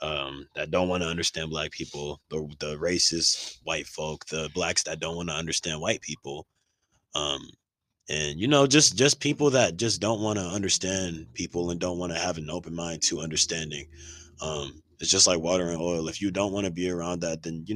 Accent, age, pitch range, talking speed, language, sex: American, 20-39, 80-95 Hz, 215 wpm, English, male